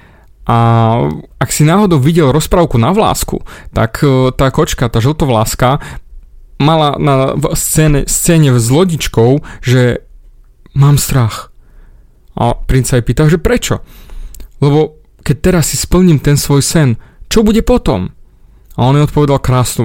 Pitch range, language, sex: 120-155 Hz, Slovak, male